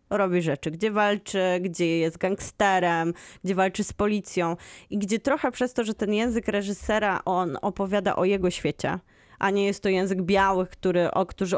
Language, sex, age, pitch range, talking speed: Polish, female, 20-39, 180-210 Hz, 175 wpm